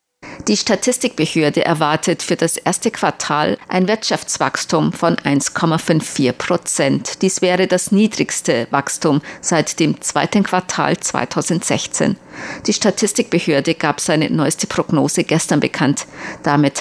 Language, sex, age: German, female, 50-69